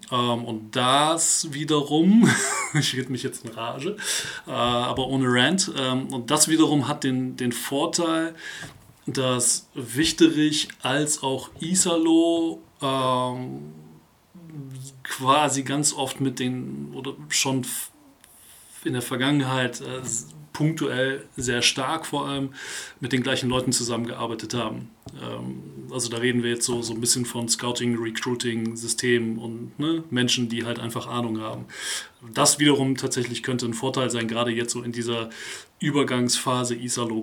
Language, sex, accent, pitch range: German, male, German, 120-140 Hz